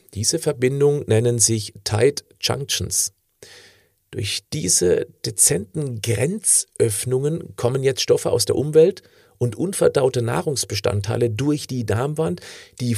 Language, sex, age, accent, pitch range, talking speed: German, male, 40-59, German, 105-150 Hz, 105 wpm